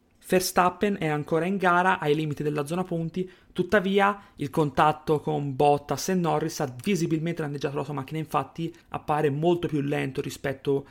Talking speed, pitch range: 160 wpm, 145-170 Hz